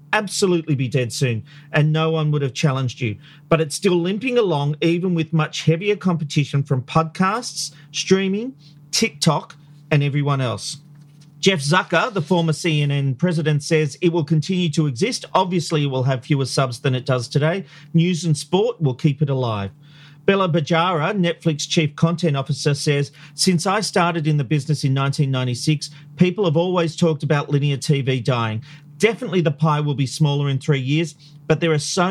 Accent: Australian